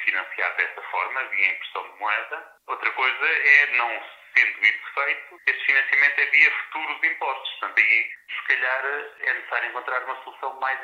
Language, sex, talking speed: Portuguese, male, 165 wpm